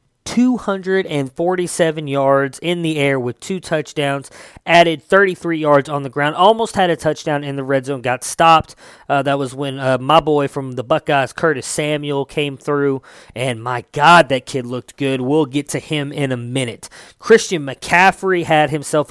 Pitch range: 135-160 Hz